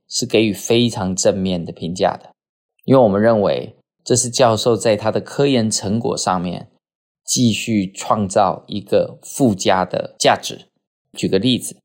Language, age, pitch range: Chinese, 20-39, 100-120 Hz